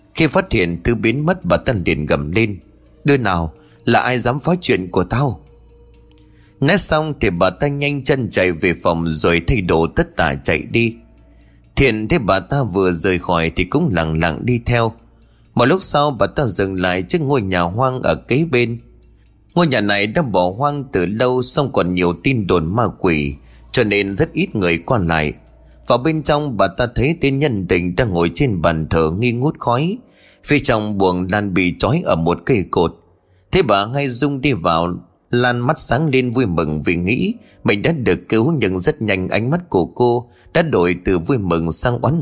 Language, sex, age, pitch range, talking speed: Vietnamese, male, 20-39, 90-130 Hz, 205 wpm